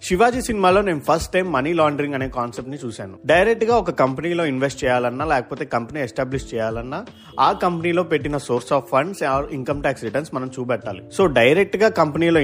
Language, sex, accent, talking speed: Telugu, male, native, 170 wpm